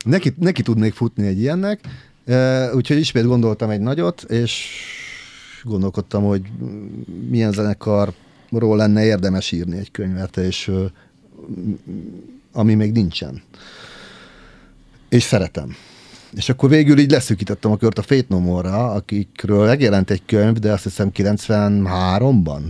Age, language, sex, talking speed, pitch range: 40-59, Hungarian, male, 120 wpm, 95-120 Hz